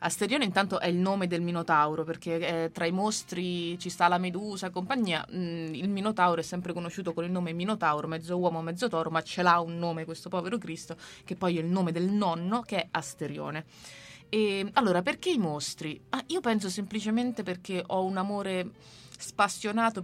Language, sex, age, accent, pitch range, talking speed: Italian, female, 20-39, native, 165-205 Hz, 190 wpm